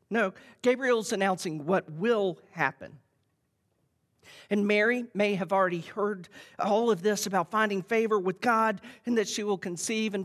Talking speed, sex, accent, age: 150 wpm, male, American, 40-59